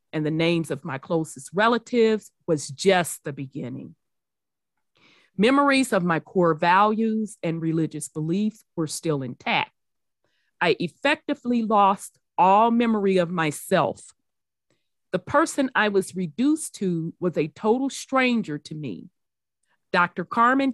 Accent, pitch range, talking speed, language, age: American, 165-235 Hz, 125 wpm, English, 40-59